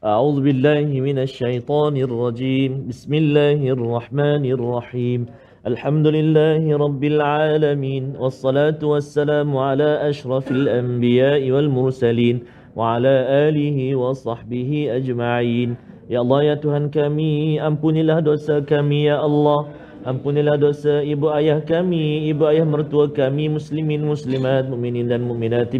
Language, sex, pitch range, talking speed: Malayalam, male, 130-175 Hz, 110 wpm